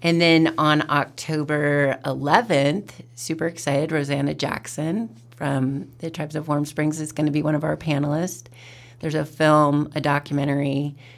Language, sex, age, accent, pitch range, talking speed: English, female, 30-49, American, 125-145 Hz, 150 wpm